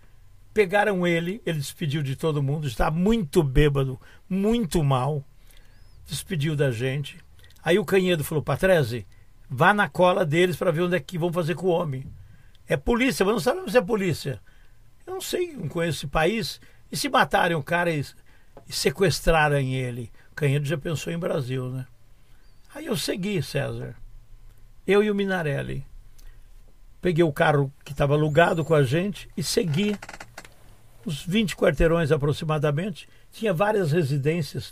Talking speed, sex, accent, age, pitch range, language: 155 wpm, male, Brazilian, 60-79, 130-185 Hz, Portuguese